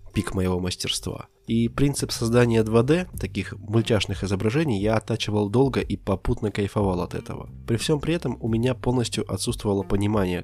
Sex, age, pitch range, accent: male, 20-39, 95-120 Hz, native